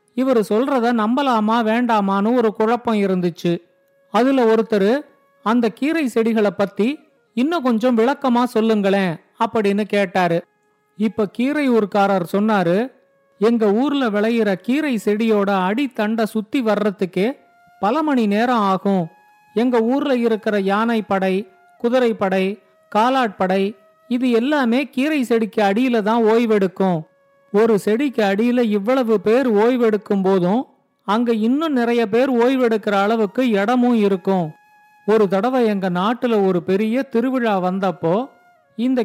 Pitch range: 205-255 Hz